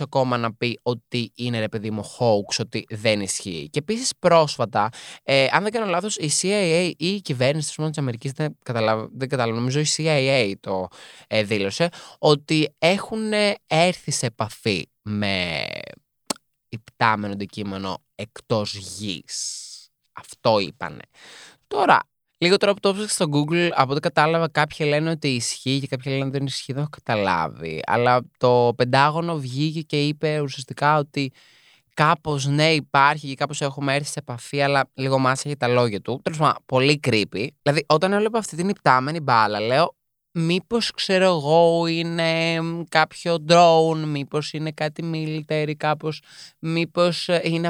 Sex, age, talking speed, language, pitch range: male, 20-39, 150 wpm, Greek, 125-165 Hz